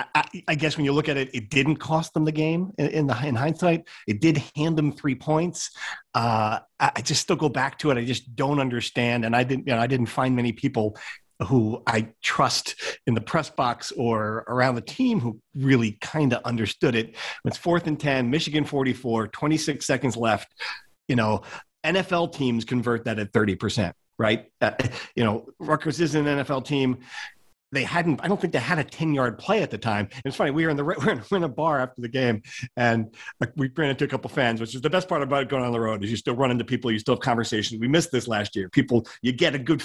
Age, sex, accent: 40-59, male, American